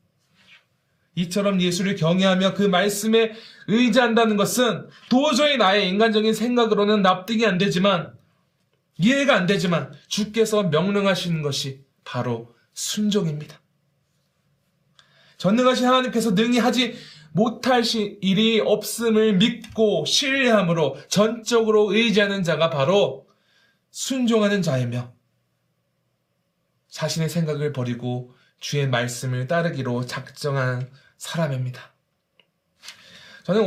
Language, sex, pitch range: Korean, male, 150-210 Hz